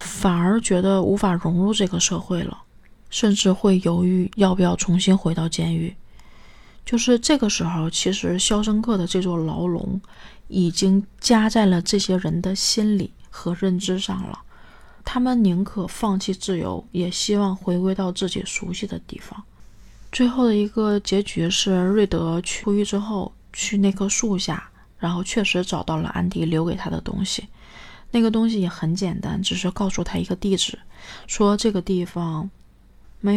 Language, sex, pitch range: Chinese, female, 180-205 Hz